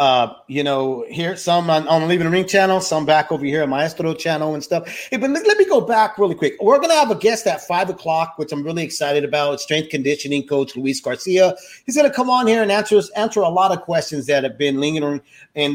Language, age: English, 40-59